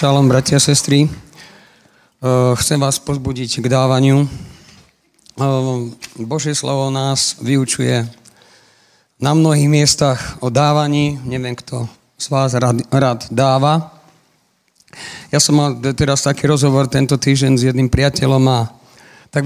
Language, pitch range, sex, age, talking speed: Slovak, 135-160 Hz, male, 50-69, 110 wpm